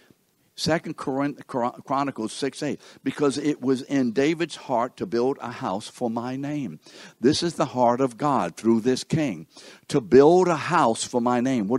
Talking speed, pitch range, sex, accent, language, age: 185 wpm, 120-150 Hz, male, American, English, 60-79